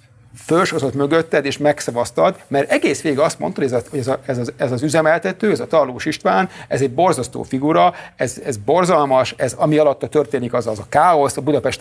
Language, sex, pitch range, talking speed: Hungarian, male, 130-175 Hz, 200 wpm